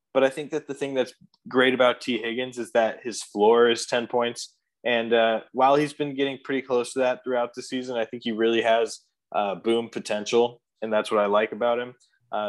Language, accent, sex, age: English, American, male, 20-39